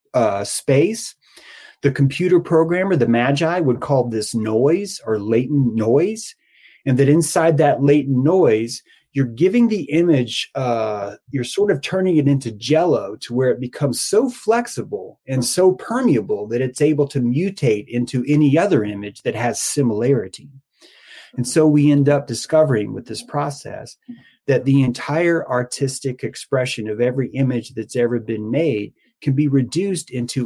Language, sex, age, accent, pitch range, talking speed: English, male, 30-49, American, 120-155 Hz, 155 wpm